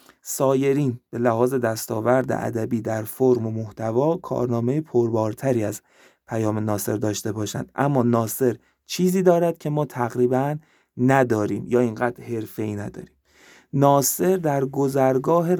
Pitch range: 115-140 Hz